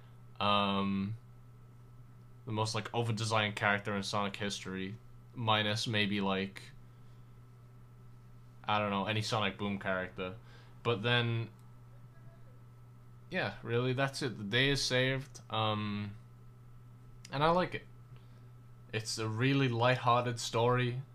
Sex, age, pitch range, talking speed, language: male, 20-39, 110-120 Hz, 110 wpm, English